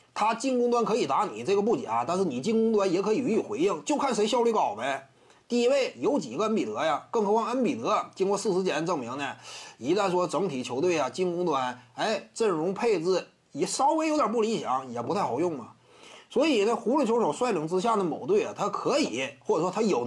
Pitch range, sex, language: 200-315 Hz, male, Chinese